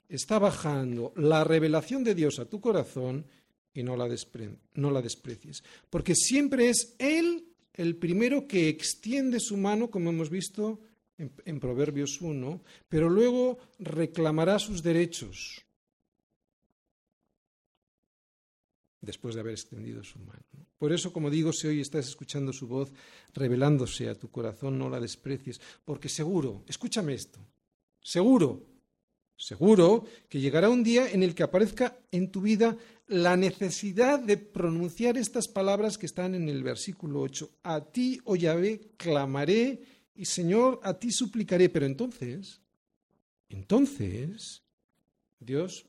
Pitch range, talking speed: 140-210 Hz, 135 wpm